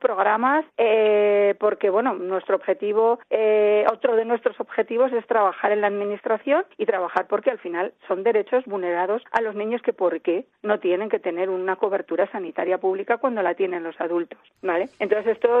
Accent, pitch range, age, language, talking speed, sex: Spanish, 195-250 Hz, 40-59, Spanish, 175 wpm, female